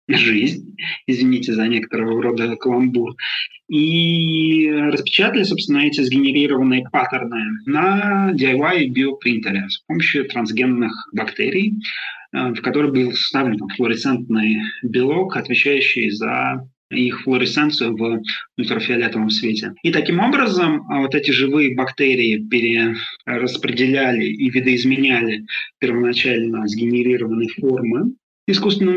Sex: male